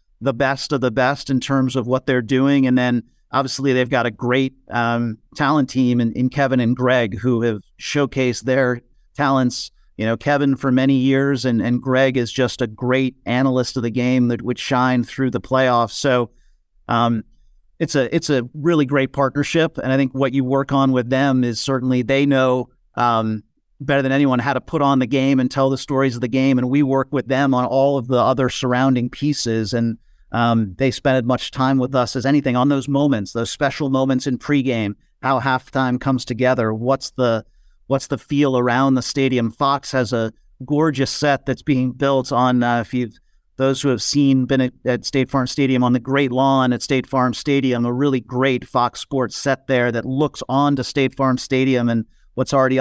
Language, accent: English, American